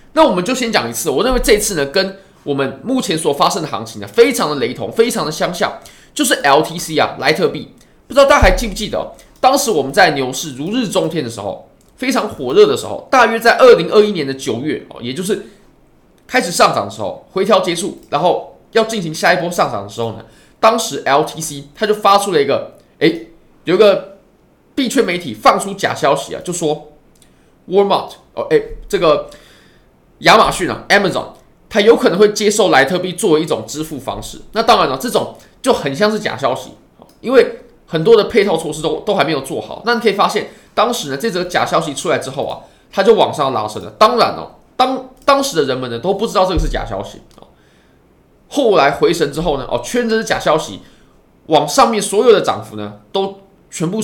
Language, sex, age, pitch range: Chinese, male, 20-39, 170-255 Hz